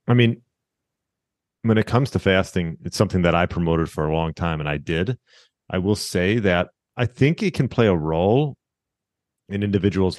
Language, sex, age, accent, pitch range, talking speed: English, male, 30-49, American, 85-100 Hz, 190 wpm